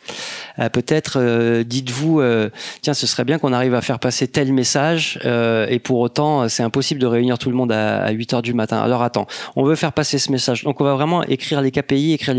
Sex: male